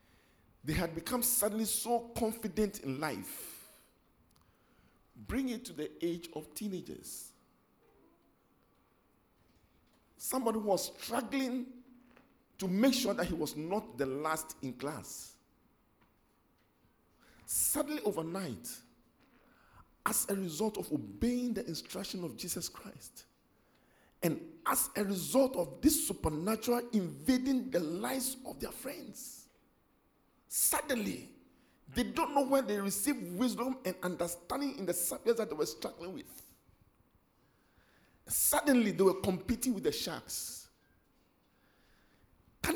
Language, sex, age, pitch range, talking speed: English, male, 50-69, 155-250 Hz, 110 wpm